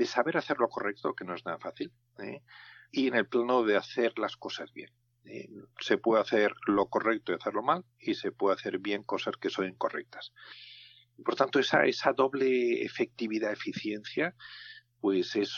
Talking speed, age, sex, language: 175 wpm, 50-69, male, Spanish